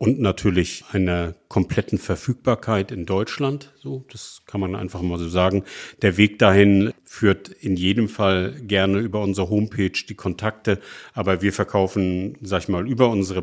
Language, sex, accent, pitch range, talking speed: German, male, German, 95-110 Hz, 160 wpm